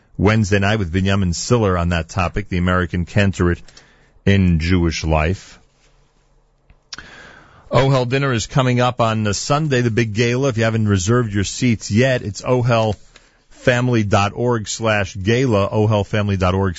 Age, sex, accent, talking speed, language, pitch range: 40-59, male, American, 130 wpm, English, 95-125 Hz